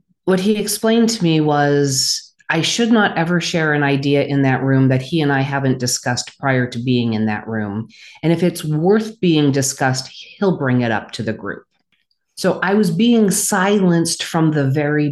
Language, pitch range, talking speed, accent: English, 130-165 Hz, 195 wpm, American